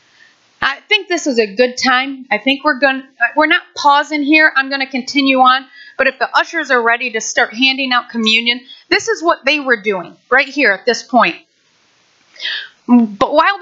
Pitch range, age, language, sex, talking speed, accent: 260-350 Hz, 40-59, English, female, 195 wpm, American